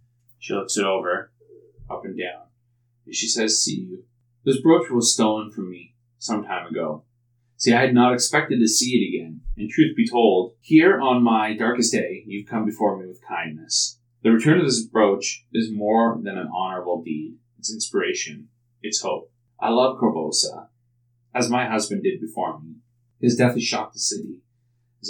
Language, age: English, 30-49